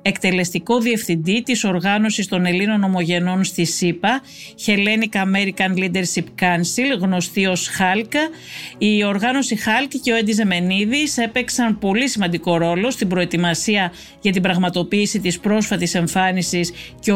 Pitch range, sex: 180-235 Hz, female